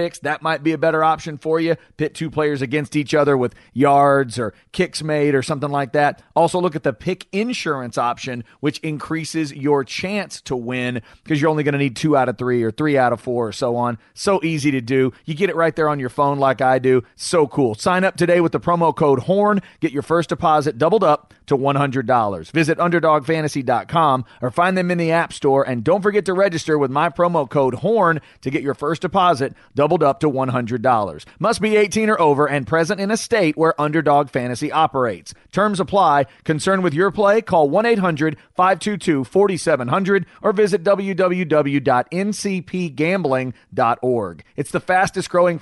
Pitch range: 135-180 Hz